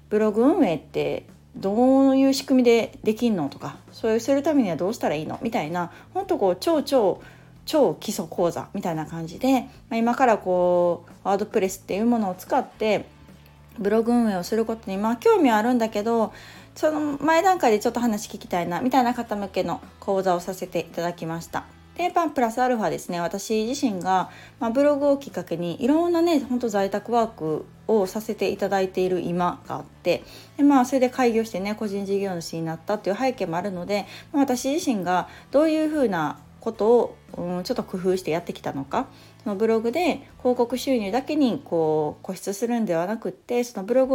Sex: female